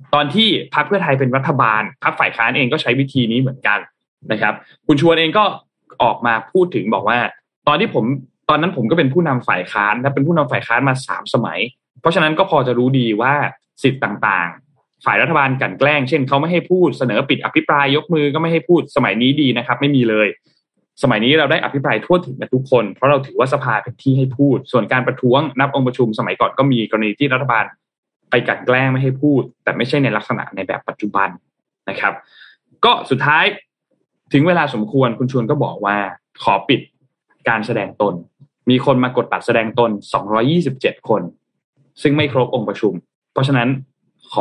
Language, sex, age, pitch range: Thai, male, 20-39, 120-150 Hz